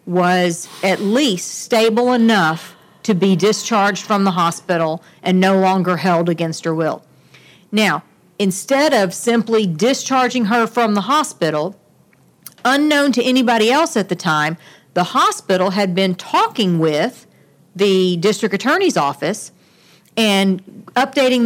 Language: English